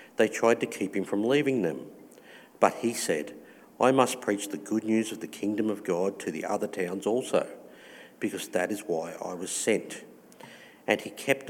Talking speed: 195 wpm